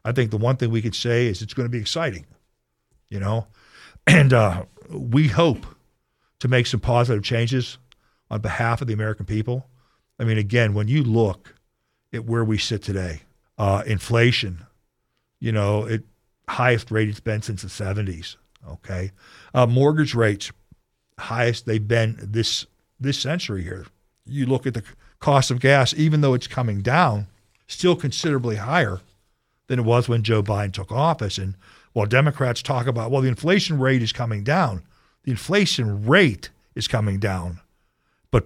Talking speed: 165 wpm